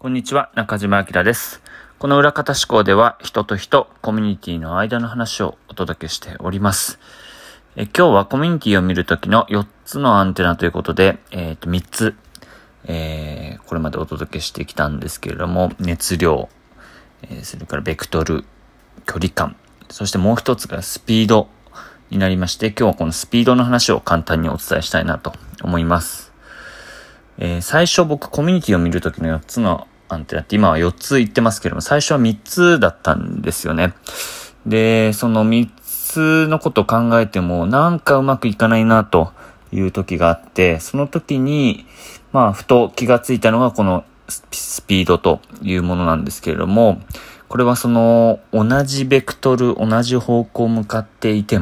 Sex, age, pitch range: male, 30-49, 85-120 Hz